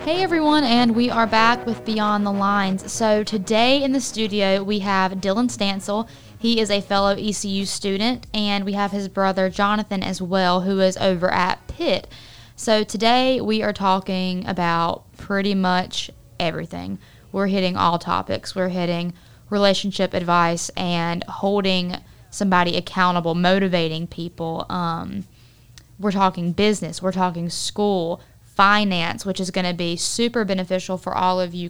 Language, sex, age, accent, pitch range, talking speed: English, female, 20-39, American, 175-200 Hz, 150 wpm